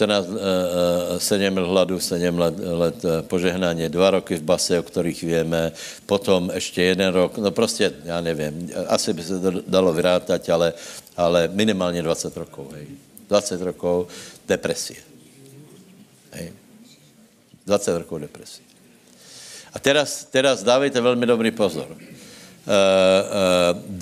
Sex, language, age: male, Slovak, 60-79